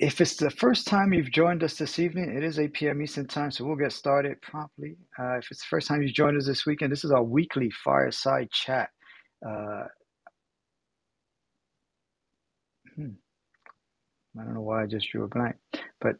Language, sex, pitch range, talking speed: English, male, 125-160 Hz, 185 wpm